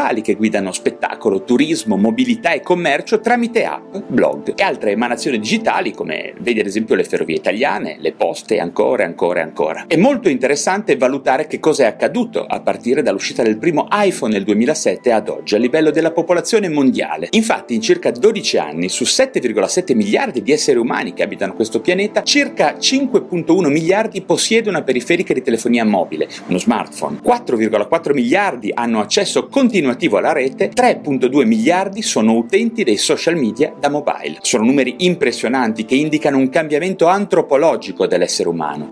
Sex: male